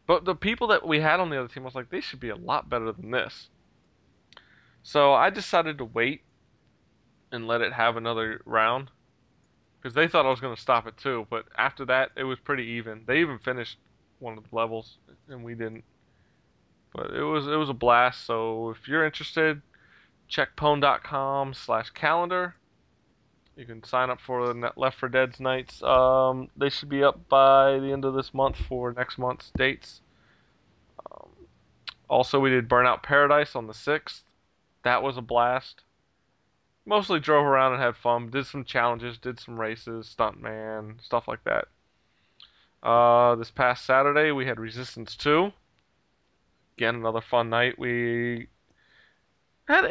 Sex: male